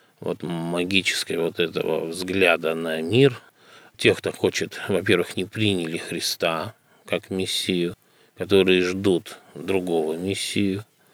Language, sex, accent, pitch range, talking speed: Russian, male, native, 90-110 Hz, 110 wpm